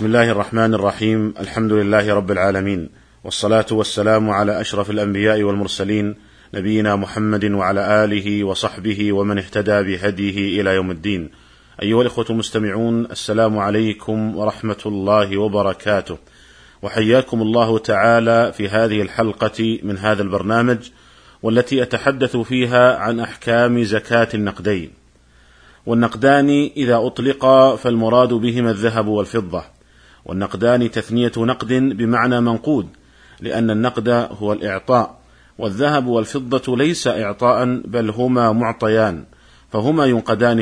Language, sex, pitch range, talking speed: Arabic, male, 105-120 Hz, 110 wpm